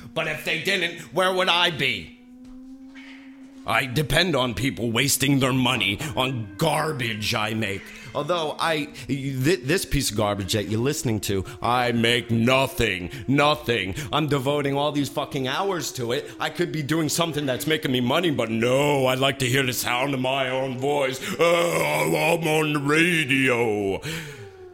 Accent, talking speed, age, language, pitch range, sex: American, 165 wpm, 40-59, English, 110-160 Hz, male